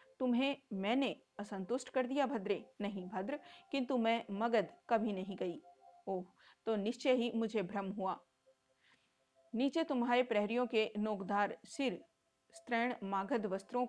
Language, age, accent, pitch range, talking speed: Hindi, 40-59, native, 190-235 Hz, 115 wpm